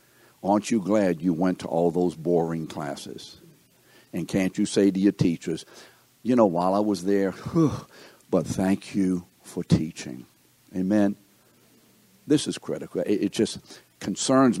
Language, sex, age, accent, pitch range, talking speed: English, male, 60-79, American, 90-115 Hz, 150 wpm